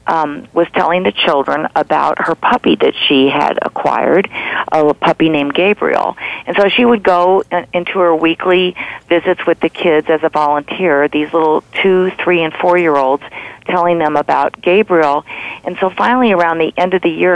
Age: 50-69